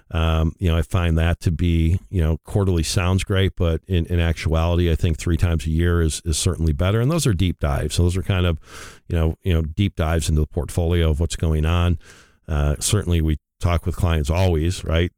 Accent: American